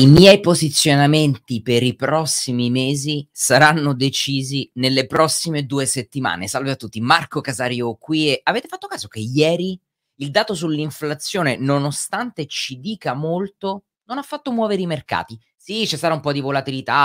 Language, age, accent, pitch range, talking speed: Italian, 30-49, native, 125-185 Hz, 160 wpm